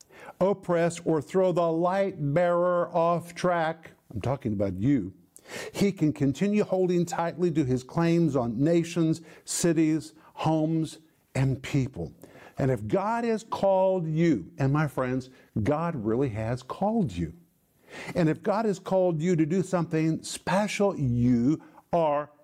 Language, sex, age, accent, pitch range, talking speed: English, male, 50-69, American, 140-180 Hz, 140 wpm